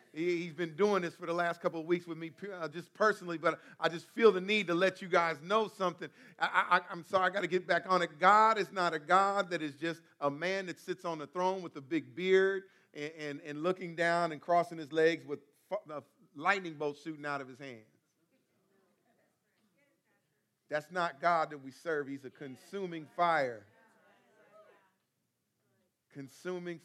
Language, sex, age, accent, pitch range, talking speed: English, male, 40-59, American, 140-175 Hz, 195 wpm